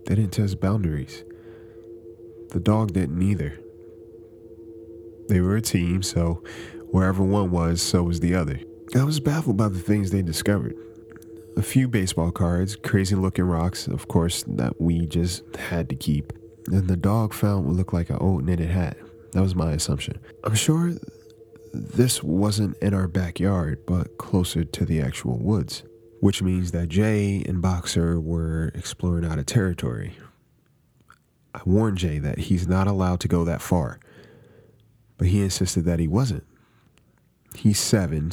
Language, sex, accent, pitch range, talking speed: English, male, American, 85-115 Hz, 160 wpm